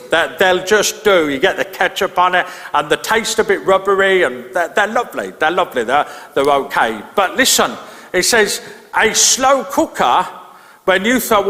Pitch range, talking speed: 160-215 Hz, 185 wpm